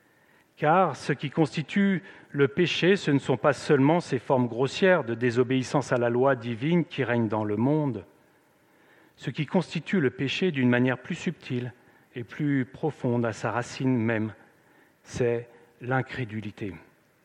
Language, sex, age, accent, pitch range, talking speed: French, male, 40-59, French, 120-150 Hz, 150 wpm